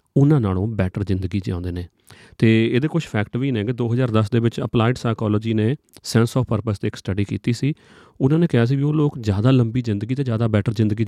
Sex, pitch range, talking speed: male, 105-125 Hz, 235 wpm